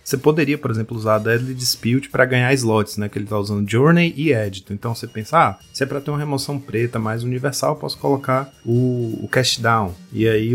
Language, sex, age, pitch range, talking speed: Portuguese, male, 30-49, 105-135 Hz, 235 wpm